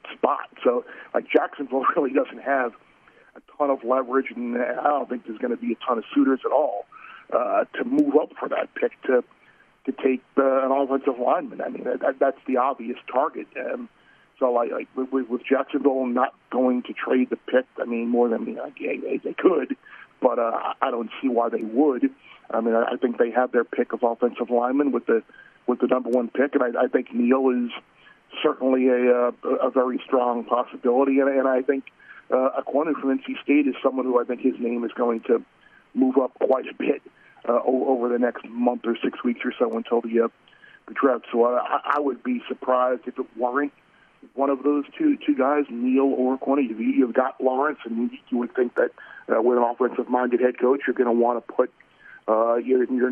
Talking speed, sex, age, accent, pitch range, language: 210 wpm, male, 40-59, American, 120-135 Hz, English